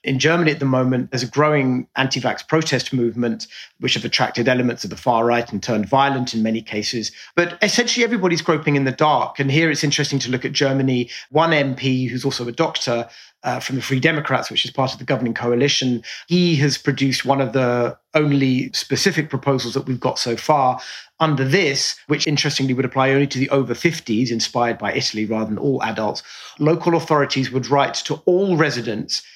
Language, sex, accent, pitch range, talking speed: English, male, British, 125-150 Hz, 195 wpm